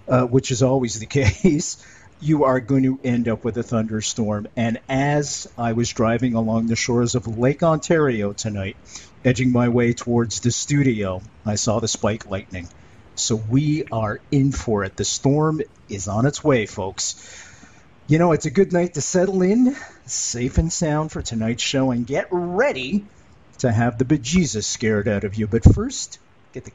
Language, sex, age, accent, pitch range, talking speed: English, male, 50-69, American, 110-150 Hz, 180 wpm